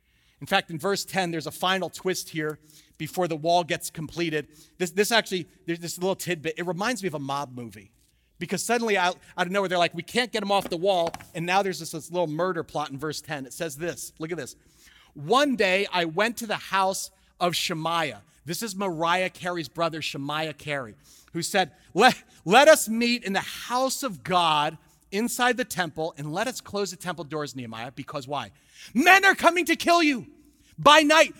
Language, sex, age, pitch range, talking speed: English, male, 40-59, 155-220 Hz, 205 wpm